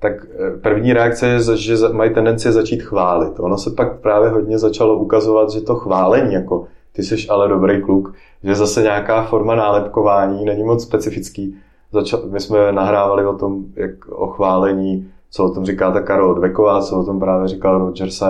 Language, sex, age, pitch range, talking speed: Czech, male, 30-49, 95-110 Hz, 175 wpm